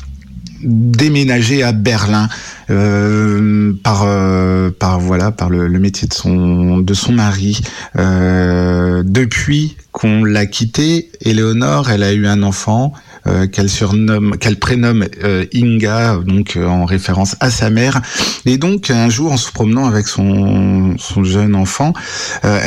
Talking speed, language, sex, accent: 145 wpm, French, male, French